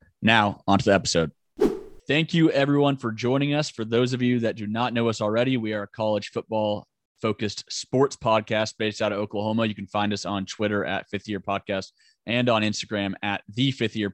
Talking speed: 210 wpm